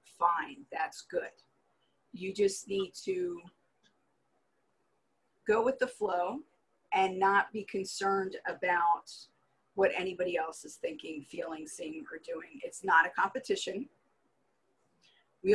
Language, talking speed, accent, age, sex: English, 115 wpm, American, 40-59, female